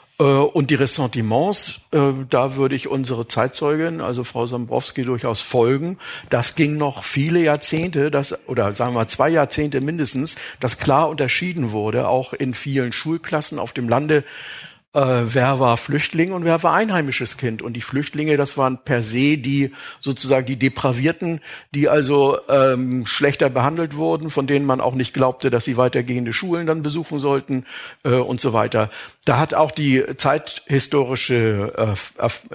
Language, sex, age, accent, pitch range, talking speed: German, male, 50-69, German, 125-150 Hz, 155 wpm